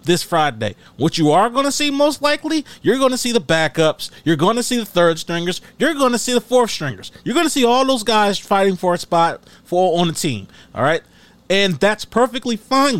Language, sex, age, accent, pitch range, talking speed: English, male, 30-49, American, 155-220 Hz, 230 wpm